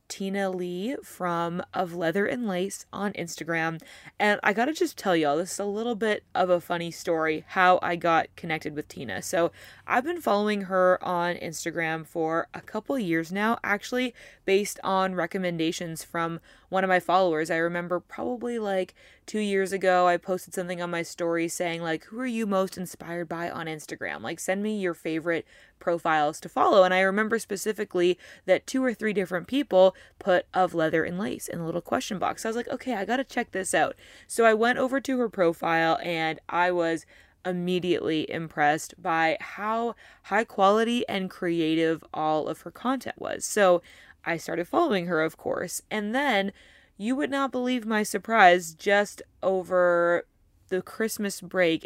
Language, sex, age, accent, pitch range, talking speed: English, female, 20-39, American, 170-210 Hz, 180 wpm